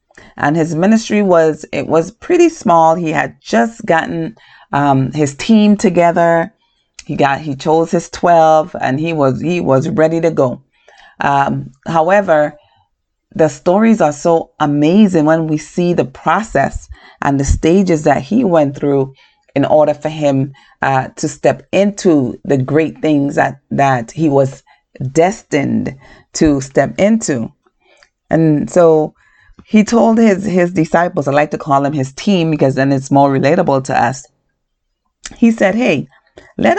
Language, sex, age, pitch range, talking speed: English, female, 40-59, 140-175 Hz, 150 wpm